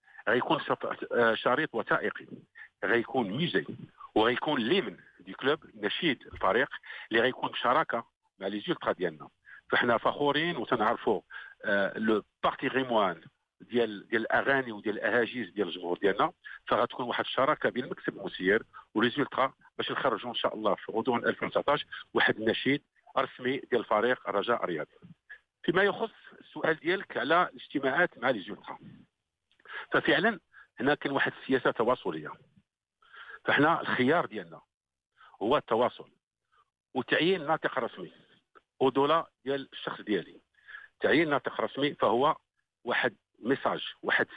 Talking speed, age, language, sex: 115 wpm, 50-69, Arabic, male